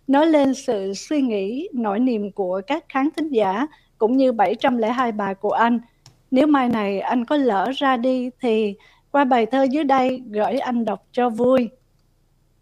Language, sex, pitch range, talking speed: Vietnamese, female, 215-275 Hz, 175 wpm